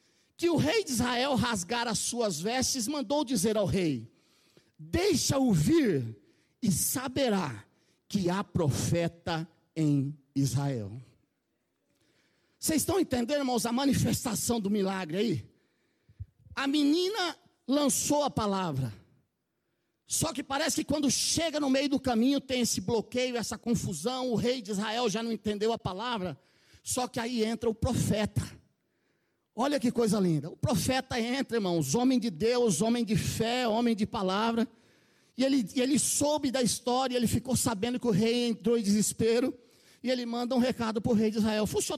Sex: male